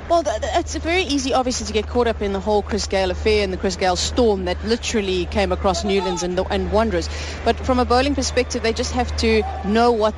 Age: 30-49